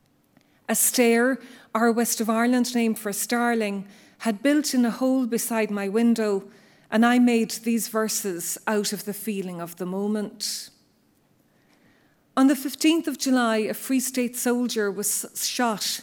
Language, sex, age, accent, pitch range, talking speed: English, female, 40-59, Irish, 205-235 Hz, 150 wpm